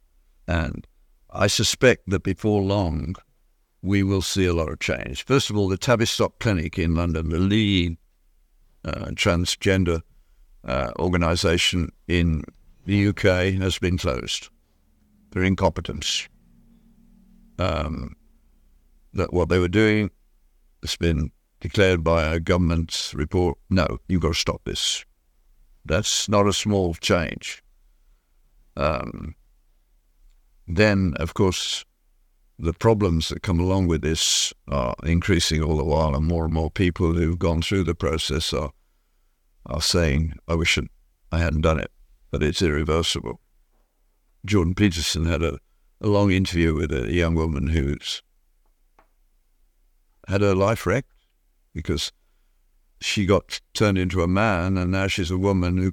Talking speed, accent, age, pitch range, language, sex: 135 wpm, British, 60-79, 80-95 Hz, English, male